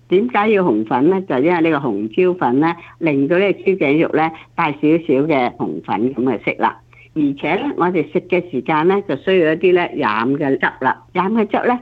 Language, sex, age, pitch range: Chinese, female, 60-79, 145-200 Hz